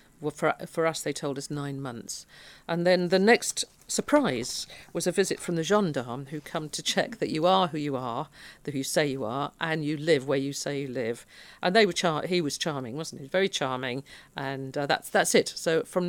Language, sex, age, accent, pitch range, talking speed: English, female, 50-69, British, 140-170 Hz, 230 wpm